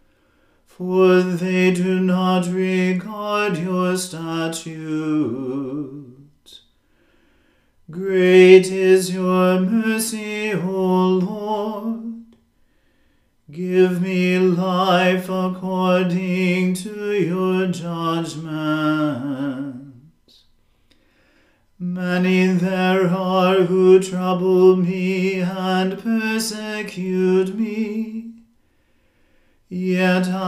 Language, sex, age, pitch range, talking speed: English, male, 40-59, 180-190 Hz, 60 wpm